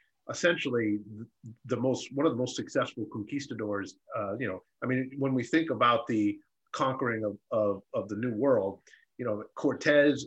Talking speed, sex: 170 wpm, male